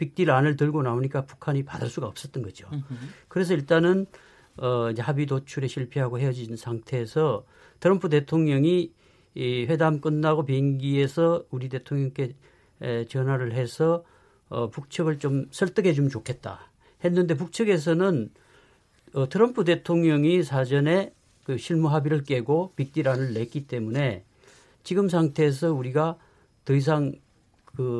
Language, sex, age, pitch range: Korean, male, 50-69, 130-165 Hz